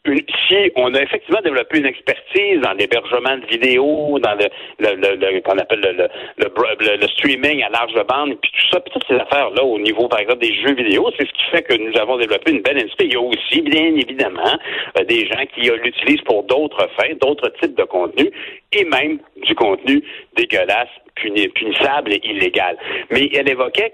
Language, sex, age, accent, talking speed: French, male, 60-79, French, 200 wpm